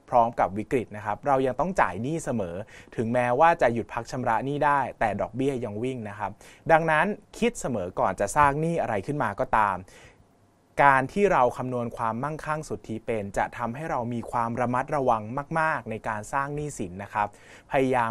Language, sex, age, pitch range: Thai, male, 20-39, 110-145 Hz